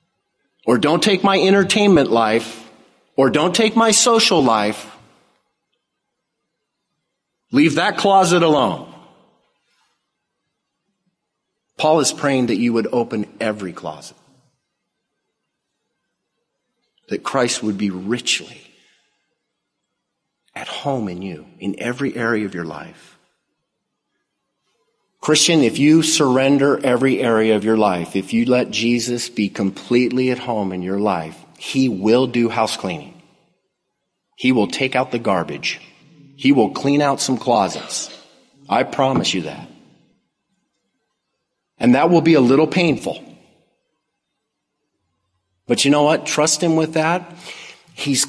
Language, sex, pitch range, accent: English, male, 110-160 Hz, American